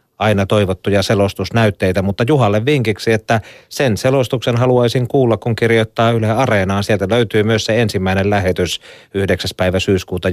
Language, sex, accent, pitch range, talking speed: Finnish, male, native, 95-120 Hz, 140 wpm